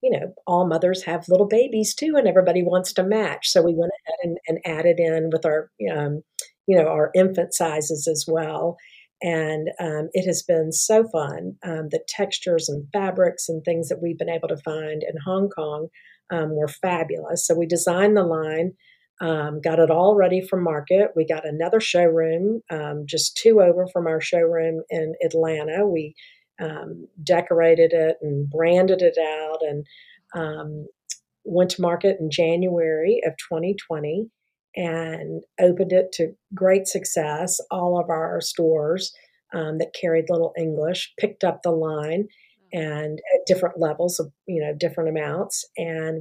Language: English